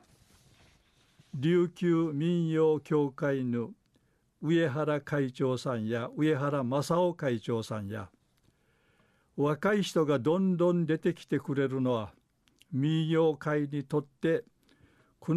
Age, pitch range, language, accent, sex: 60-79, 130-165 Hz, Japanese, native, male